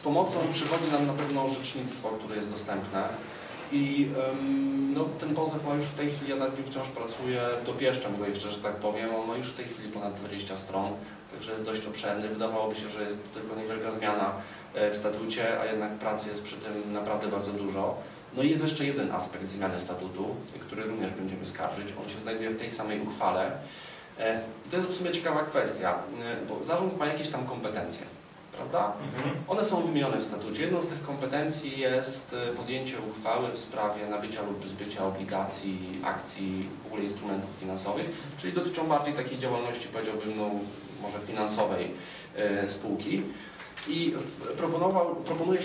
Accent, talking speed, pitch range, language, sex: native, 170 wpm, 105-140 Hz, Polish, male